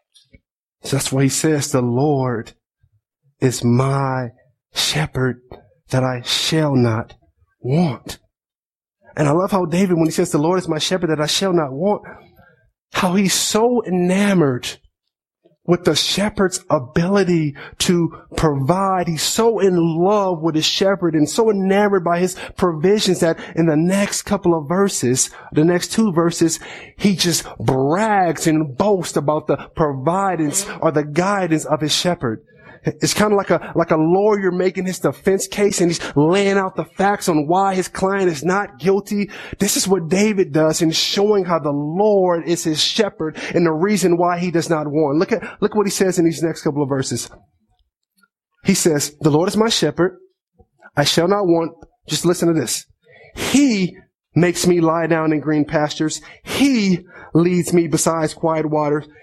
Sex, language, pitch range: male, English, 155-195 Hz